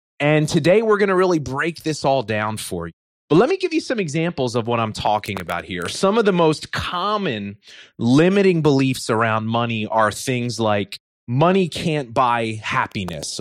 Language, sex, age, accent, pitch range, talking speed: English, male, 30-49, American, 115-170 Hz, 185 wpm